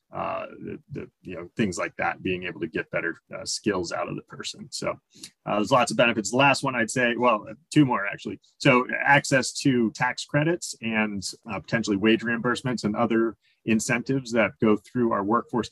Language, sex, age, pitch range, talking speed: English, male, 30-49, 105-125 Hz, 200 wpm